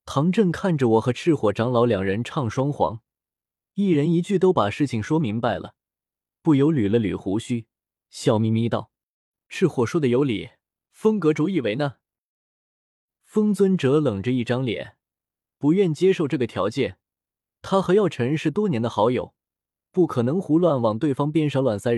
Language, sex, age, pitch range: Chinese, male, 20-39, 110-160 Hz